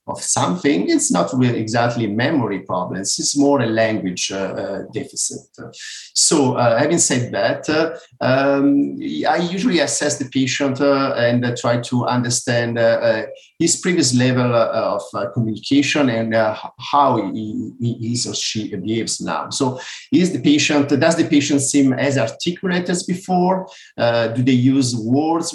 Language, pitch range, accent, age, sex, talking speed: English, 120-145 Hz, Italian, 50-69, male, 165 wpm